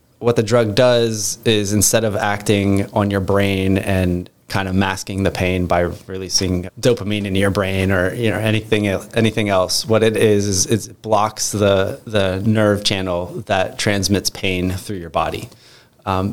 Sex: male